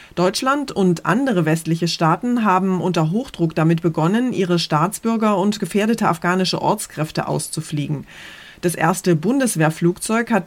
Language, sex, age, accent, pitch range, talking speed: German, female, 30-49, German, 155-195 Hz, 120 wpm